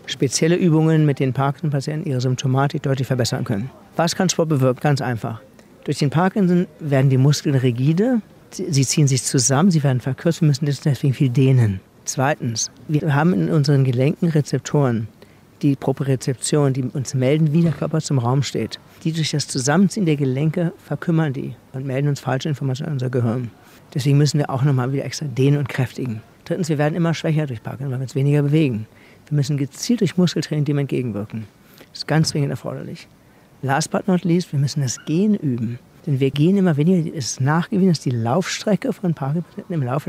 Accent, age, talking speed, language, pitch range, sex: German, 40-59, 195 wpm, German, 135-160 Hz, male